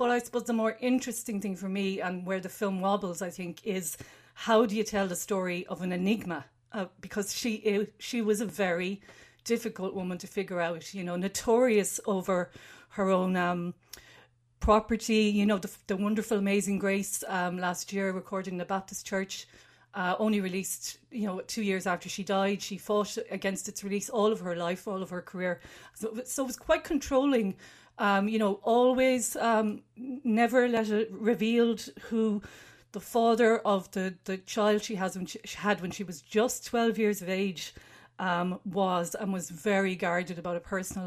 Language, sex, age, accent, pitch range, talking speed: English, female, 40-59, Irish, 190-230 Hz, 185 wpm